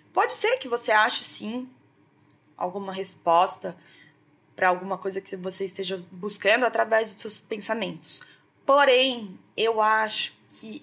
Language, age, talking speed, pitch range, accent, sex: Portuguese, 20-39, 125 wpm, 190-225 Hz, Brazilian, female